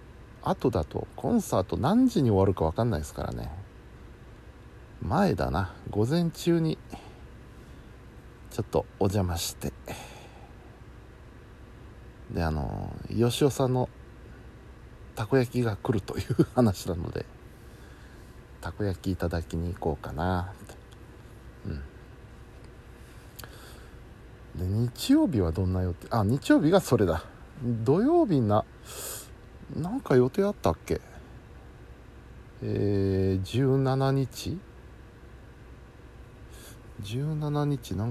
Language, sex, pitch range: Japanese, male, 90-125 Hz